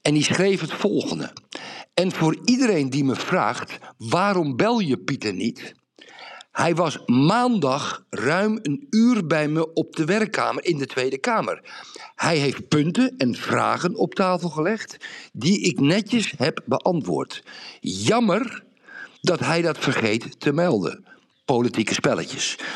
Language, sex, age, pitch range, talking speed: Dutch, male, 60-79, 140-210 Hz, 140 wpm